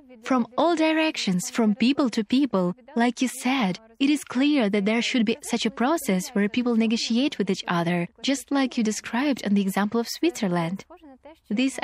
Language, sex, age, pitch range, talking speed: English, female, 20-39, 200-265 Hz, 185 wpm